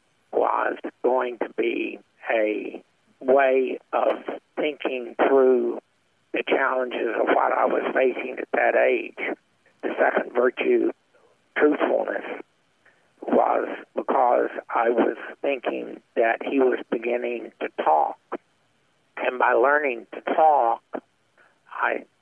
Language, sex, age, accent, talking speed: English, male, 60-79, American, 110 wpm